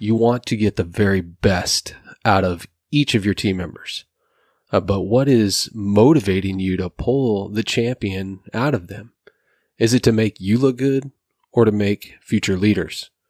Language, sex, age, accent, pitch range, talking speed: English, male, 30-49, American, 95-115 Hz, 175 wpm